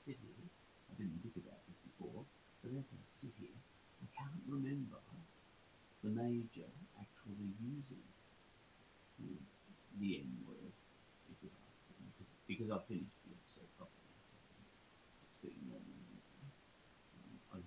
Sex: male